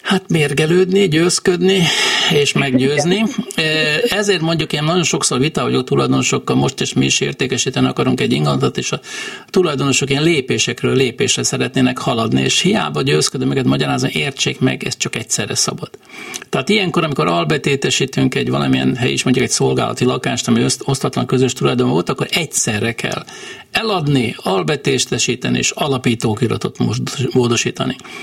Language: Hungarian